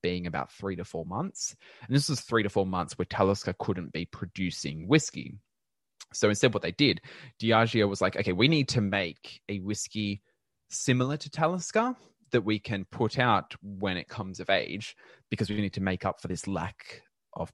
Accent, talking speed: Australian, 195 wpm